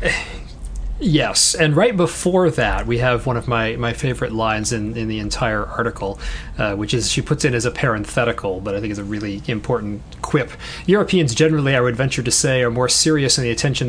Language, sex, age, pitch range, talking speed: English, male, 30-49, 105-135 Hz, 205 wpm